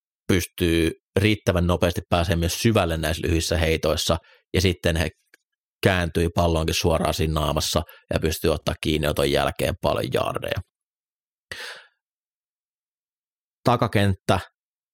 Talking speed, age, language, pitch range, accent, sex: 90 wpm, 30-49, Finnish, 80-95 Hz, native, male